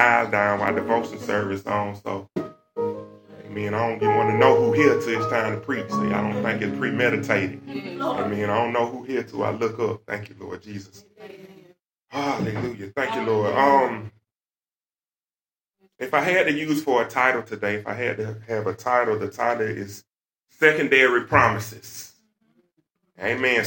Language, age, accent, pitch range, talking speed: English, 30-49, American, 110-145 Hz, 175 wpm